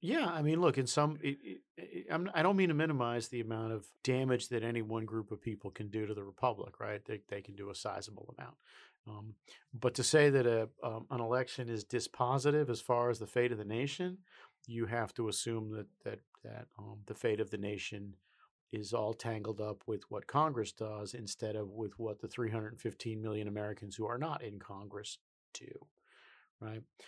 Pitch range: 105-120 Hz